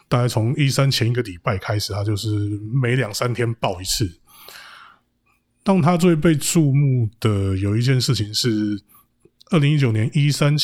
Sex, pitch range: male, 100-130 Hz